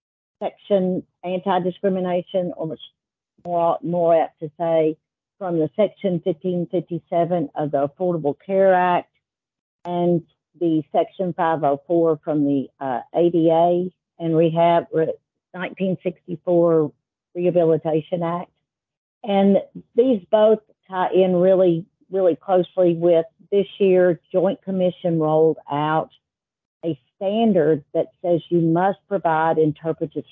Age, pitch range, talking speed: 50-69, 150-180 Hz, 105 wpm